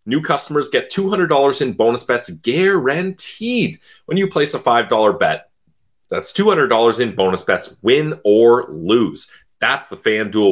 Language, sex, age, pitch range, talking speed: English, male, 30-49, 100-155 Hz, 170 wpm